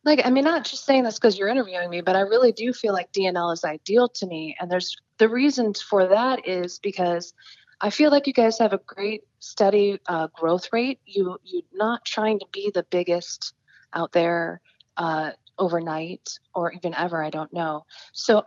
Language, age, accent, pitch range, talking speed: English, 20-39, American, 170-210 Hz, 200 wpm